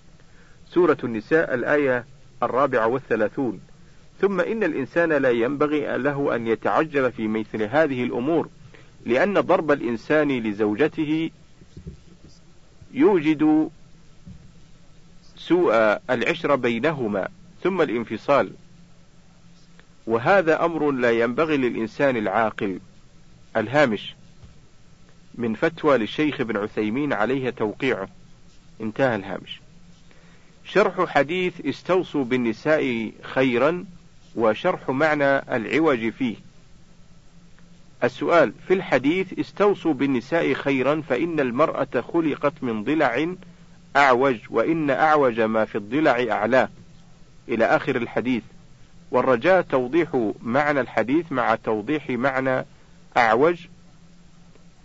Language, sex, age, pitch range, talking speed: Arabic, male, 50-69, 130-170 Hz, 90 wpm